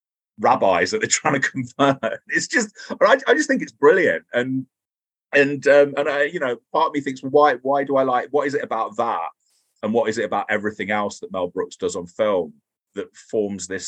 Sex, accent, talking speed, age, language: male, British, 220 wpm, 30-49, English